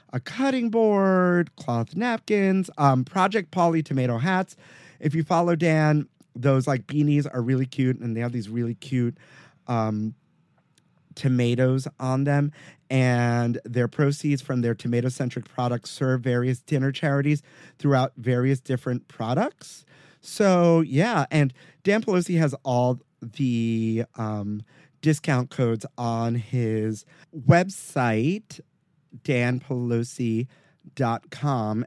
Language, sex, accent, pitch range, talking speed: English, male, American, 120-160 Hz, 115 wpm